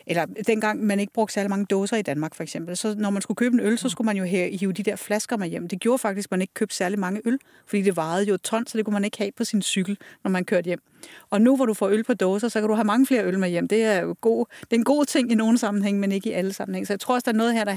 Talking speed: 350 wpm